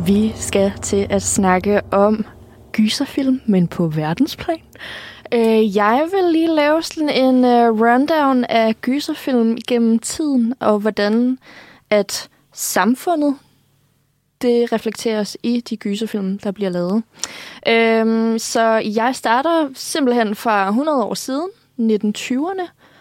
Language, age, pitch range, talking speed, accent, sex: Danish, 20-39, 200-250 Hz, 110 wpm, native, female